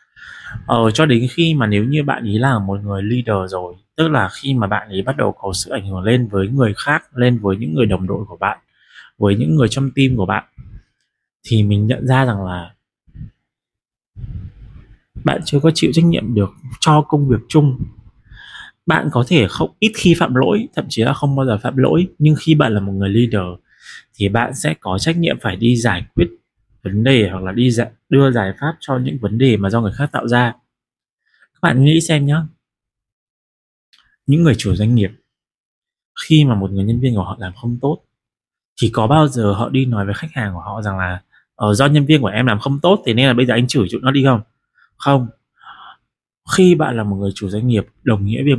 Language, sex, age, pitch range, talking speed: Vietnamese, male, 20-39, 100-140 Hz, 220 wpm